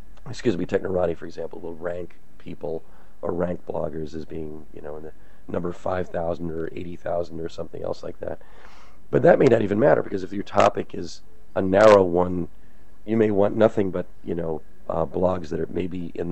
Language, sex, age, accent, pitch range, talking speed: English, male, 40-59, American, 80-90 Hz, 200 wpm